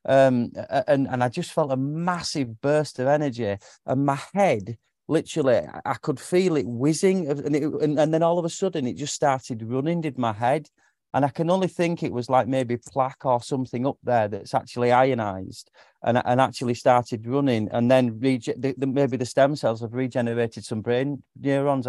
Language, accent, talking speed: English, British, 195 wpm